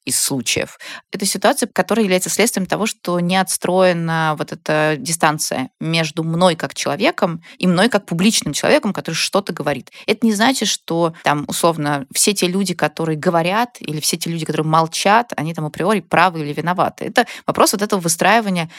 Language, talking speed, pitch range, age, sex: Russian, 170 wpm, 150-190 Hz, 20-39, female